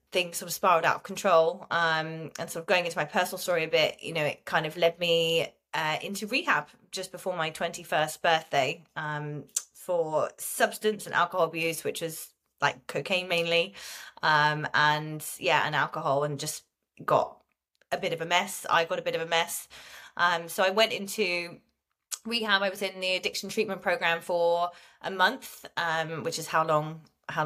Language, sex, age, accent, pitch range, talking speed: English, female, 20-39, British, 165-205 Hz, 190 wpm